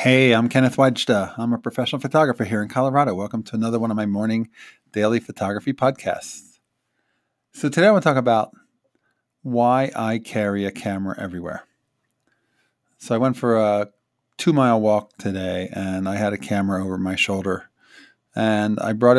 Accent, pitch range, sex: American, 105-130 Hz, male